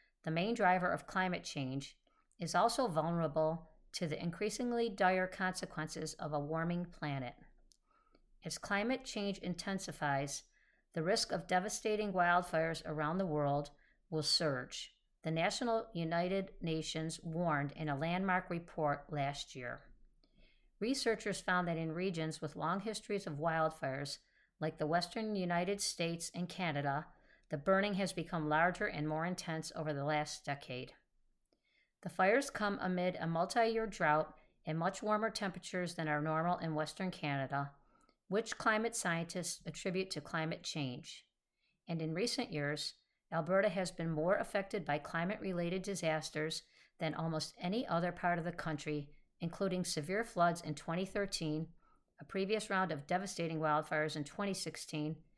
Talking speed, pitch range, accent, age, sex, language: 140 wpm, 155-190 Hz, American, 50-69, female, English